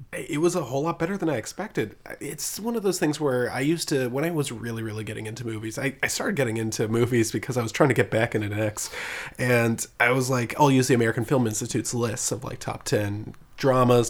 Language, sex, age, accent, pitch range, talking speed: English, male, 20-39, American, 115-145 Hz, 245 wpm